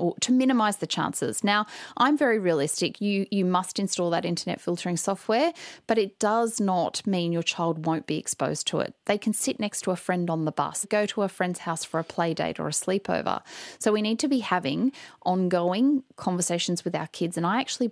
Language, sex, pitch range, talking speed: English, female, 170-220 Hz, 220 wpm